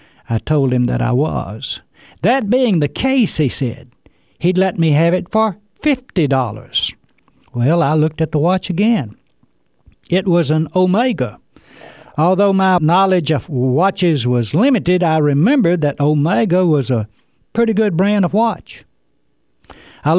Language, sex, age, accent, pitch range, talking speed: English, male, 60-79, American, 135-190 Hz, 145 wpm